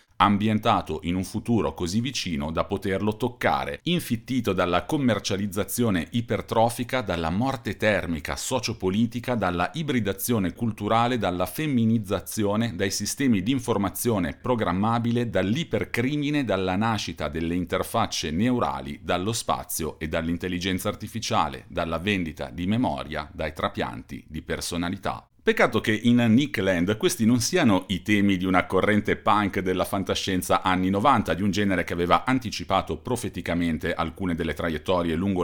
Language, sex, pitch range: Italian, male, 85-110 Hz